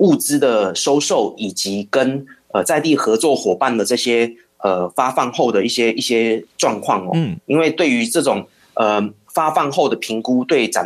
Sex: male